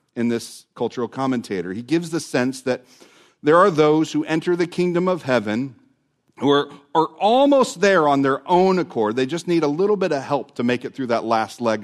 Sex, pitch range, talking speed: male, 120-155 Hz, 215 wpm